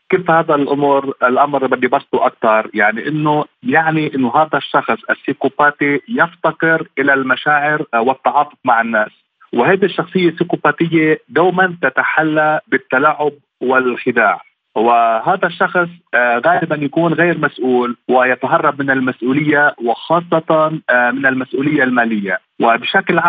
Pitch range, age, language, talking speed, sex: 130-160 Hz, 40-59, Arabic, 105 wpm, male